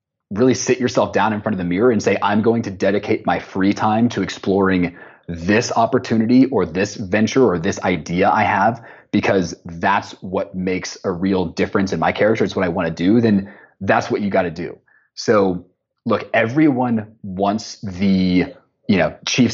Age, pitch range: 30-49, 95-115 Hz